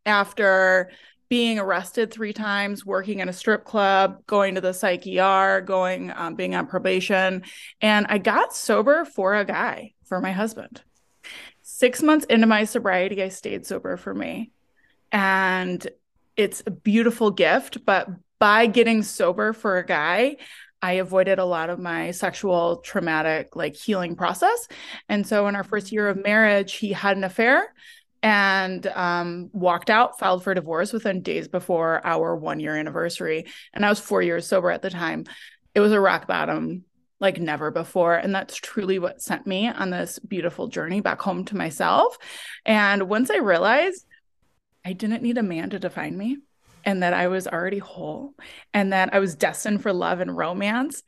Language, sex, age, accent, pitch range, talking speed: English, female, 20-39, American, 185-215 Hz, 170 wpm